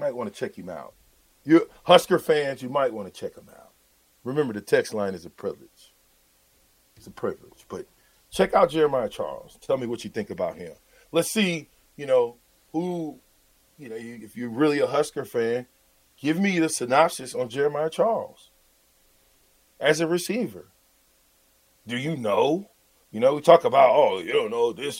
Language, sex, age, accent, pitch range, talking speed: English, male, 40-59, American, 135-220 Hz, 180 wpm